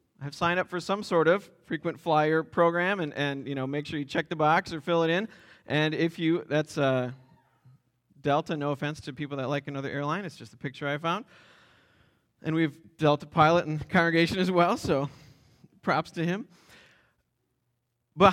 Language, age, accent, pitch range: English, 30-49, American, 140-190 Hz